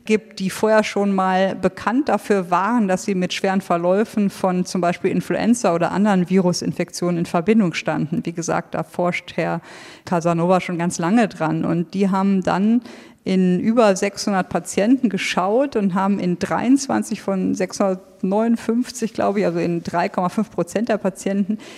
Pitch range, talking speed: 175-215 Hz, 155 wpm